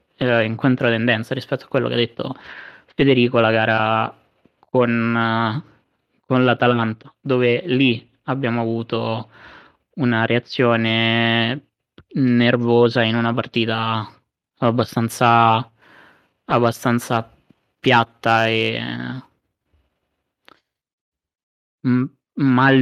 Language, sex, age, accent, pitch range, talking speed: Italian, male, 20-39, native, 115-125 Hz, 75 wpm